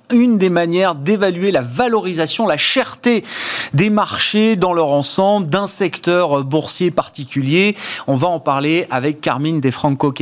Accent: French